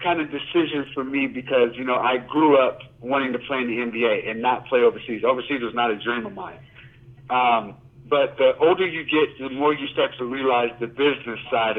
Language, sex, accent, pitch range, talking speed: English, male, American, 125-140 Hz, 220 wpm